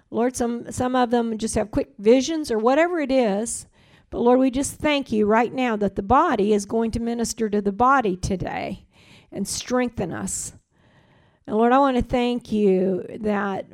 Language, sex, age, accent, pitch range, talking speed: English, female, 50-69, American, 195-240 Hz, 190 wpm